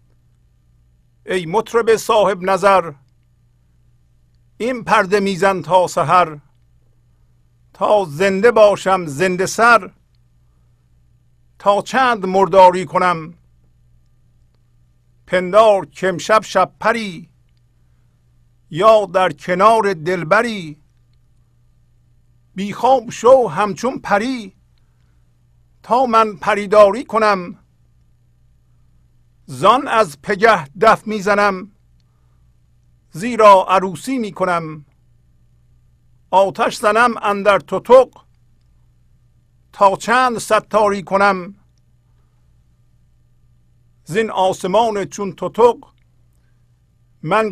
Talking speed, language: 70 wpm, Persian